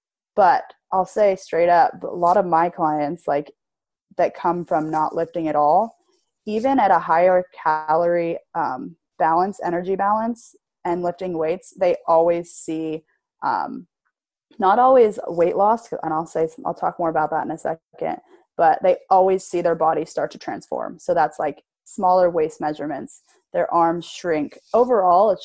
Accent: American